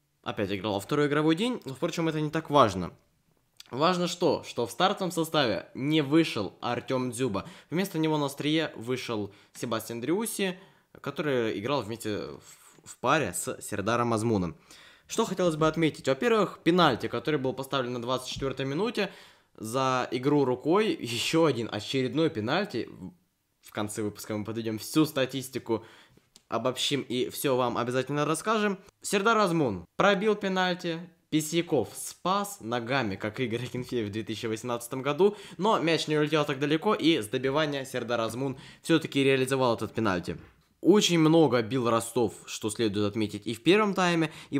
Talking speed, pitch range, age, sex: 145 wpm, 115-160 Hz, 20-39, male